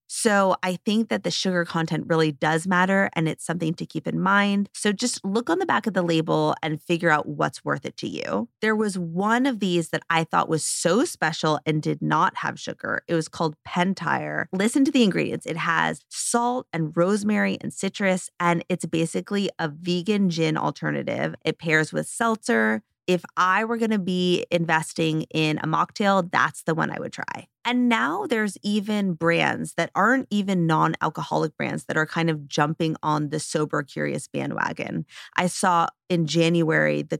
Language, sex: English, female